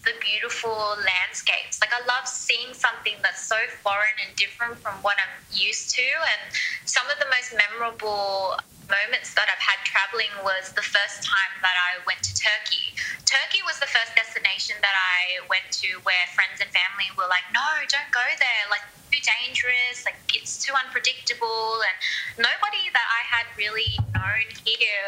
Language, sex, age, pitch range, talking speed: English, female, 20-39, 200-255 Hz, 170 wpm